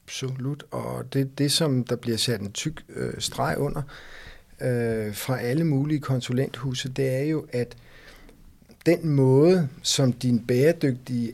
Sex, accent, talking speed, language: male, native, 145 wpm, Danish